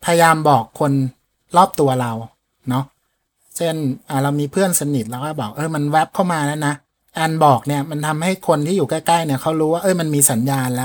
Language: Thai